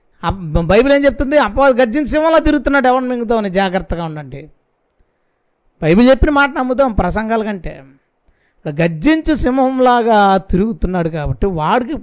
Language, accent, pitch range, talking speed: Telugu, native, 175-235 Hz, 115 wpm